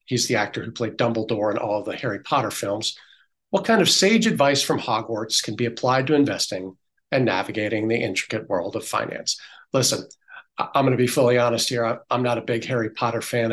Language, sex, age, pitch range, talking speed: English, male, 40-59, 115-155 Hz, 210 wpm